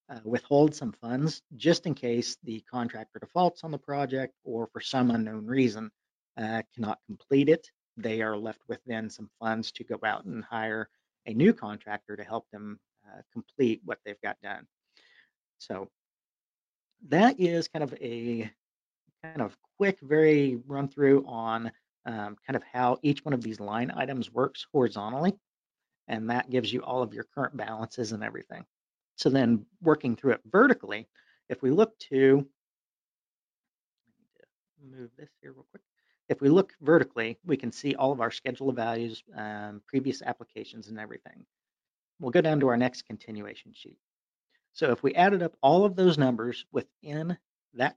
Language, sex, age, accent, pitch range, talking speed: English, male, 40-59, American, 115-145 Hz, 170 wpm